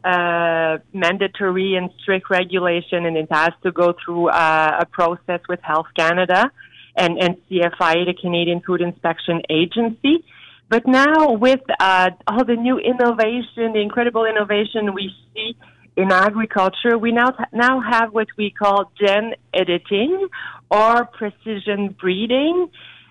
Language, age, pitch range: English, 40-59, 185-240 Hz